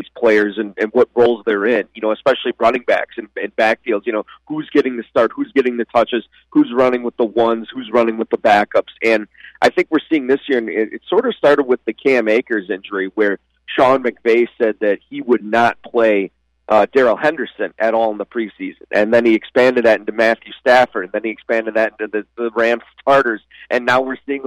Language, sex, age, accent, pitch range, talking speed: English, male, 30-49, American, 110-140 Hz, 225 wpm